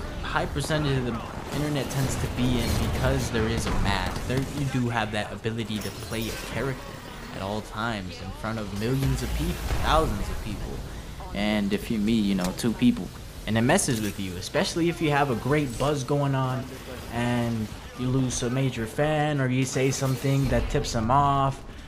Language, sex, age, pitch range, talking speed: English, male, 20-39, 105-135 Hz, 195 wpm